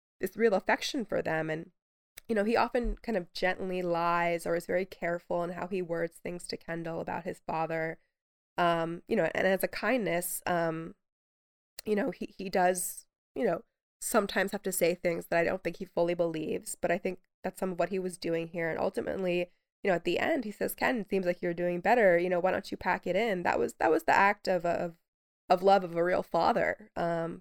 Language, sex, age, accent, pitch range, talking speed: English, female, 20-39, American, 170-190 Hz, 230 wpm